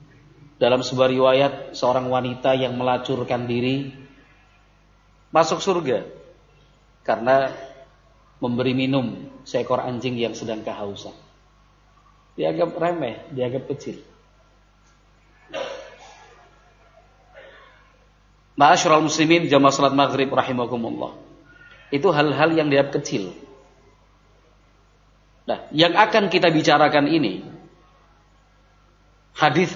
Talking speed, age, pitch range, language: 80 wpm, 40-59, 130-170 Hz, Indonesian